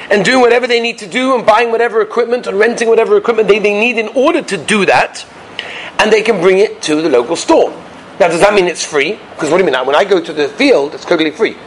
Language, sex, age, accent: English, male, 30-49, British